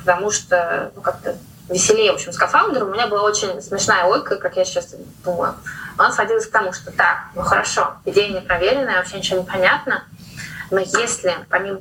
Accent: native